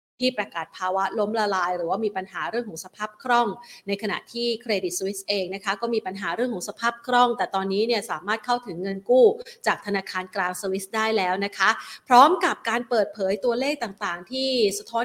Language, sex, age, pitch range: Thai, female, 30-49, 190-235 Hz